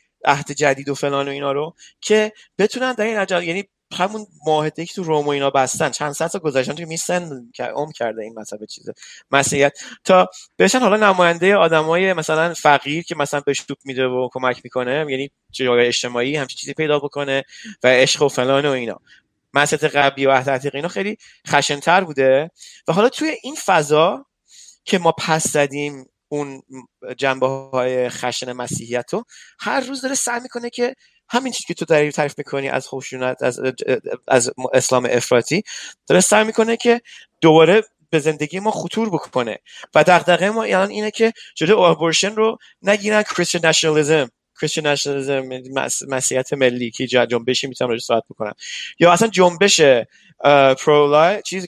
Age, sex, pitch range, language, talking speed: 30-49, male, 135-195 Hz, Persian, 160 wpm